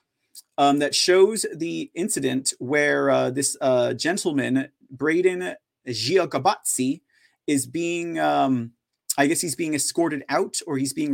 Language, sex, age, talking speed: English, male, 30-49, 130 wpm